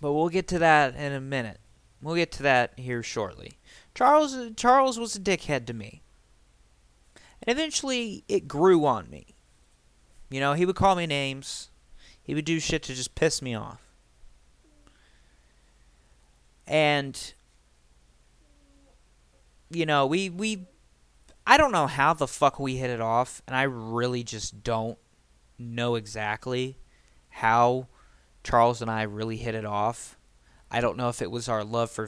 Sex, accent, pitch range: male, American, 95-145 Hz